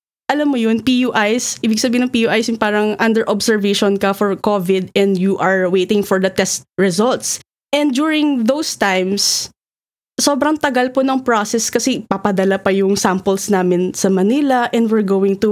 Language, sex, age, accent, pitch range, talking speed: English, female, 20-39, Filipino, 215-275 Hz, 170 wpm